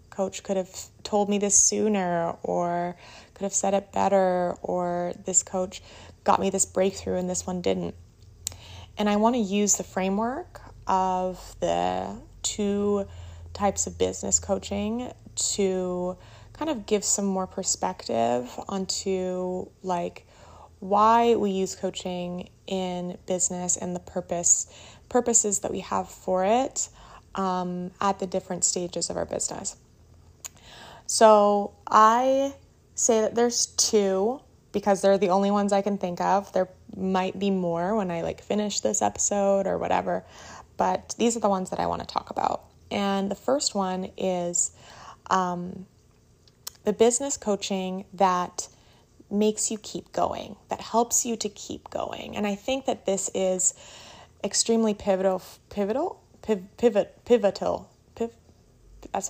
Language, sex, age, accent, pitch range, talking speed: English, female, 20-39, American, 180-205 Hz, 140 wpm